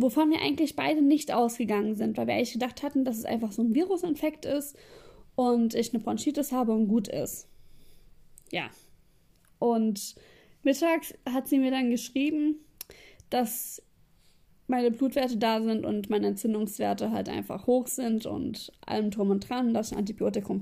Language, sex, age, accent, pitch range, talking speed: German, female, 20-39, German, 230-280 Hz, 165 wpm